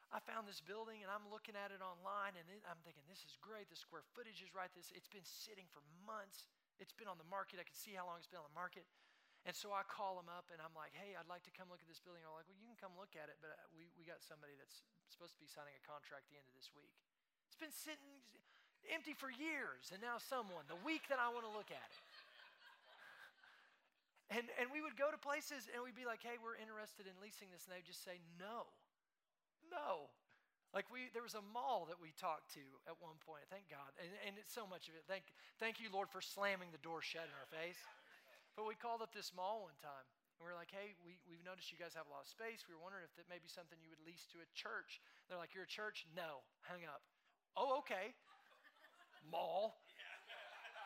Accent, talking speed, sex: American, 250 wpm, male